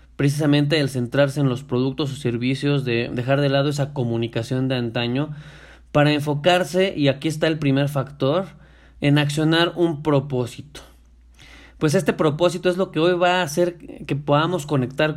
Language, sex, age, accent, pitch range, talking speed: Spanish, male, 30-49, Mexican, 125-160 Hz, 160 wpm